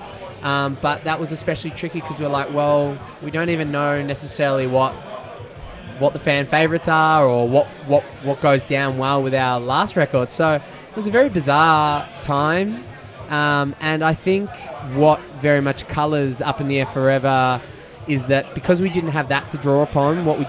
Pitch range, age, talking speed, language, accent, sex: 130-150 Hz, 20-39, 190 wpm, English, Australian, male